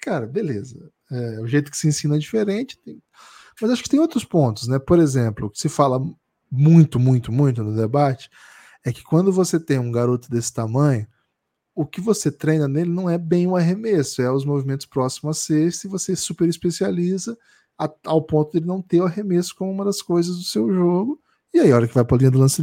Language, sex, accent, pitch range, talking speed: Portuguese, male, Brazilian, 140-200 Hz, 225 wpm